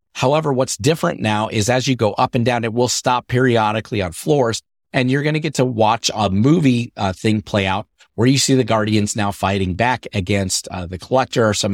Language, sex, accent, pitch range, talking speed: English, male, American, 100-125 Hz, 225 wpm